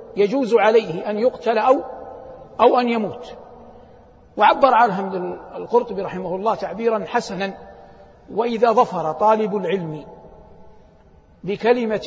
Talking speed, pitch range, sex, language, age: 100 wpm, 210-275 Hz, male, Arabic, 60-79